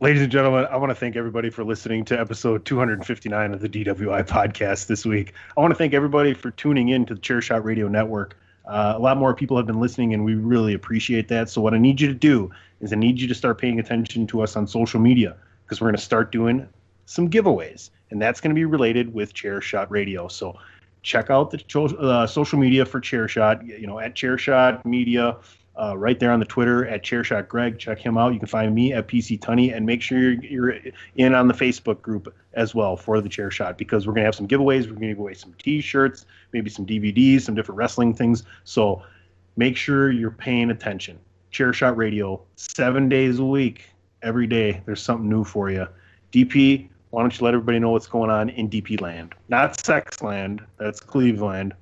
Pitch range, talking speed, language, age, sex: 105-125 Hz, 220 wpm, English, 30-49, male